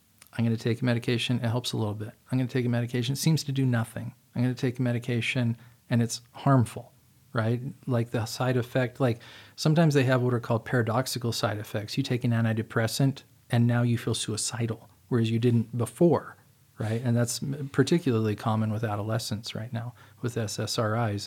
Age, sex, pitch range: 40-59, male, 110-130 Hz